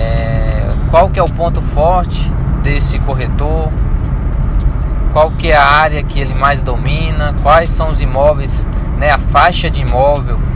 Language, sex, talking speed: Portuguese, male, 150 wpm